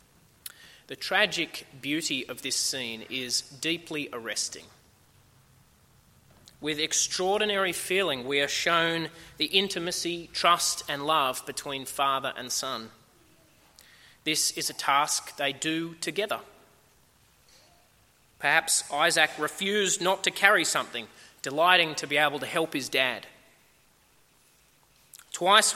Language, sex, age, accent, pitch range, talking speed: English, male, 20-39, Australian, 150-180 Hz, 110 wpm